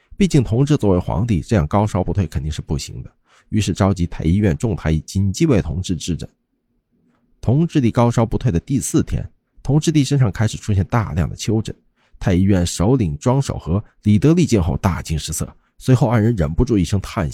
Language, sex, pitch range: Chinese, male, 85-135 Hz